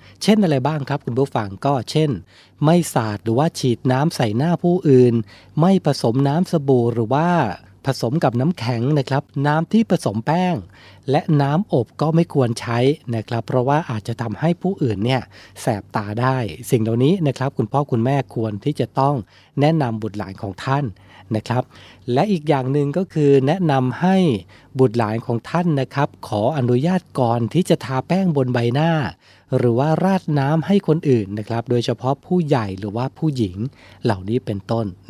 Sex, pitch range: male, 110-145 Hz